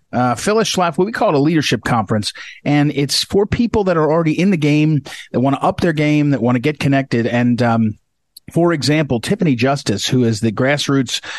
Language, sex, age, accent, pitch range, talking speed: English, male, 40-59, American, 115-150 Hz, 215 wpm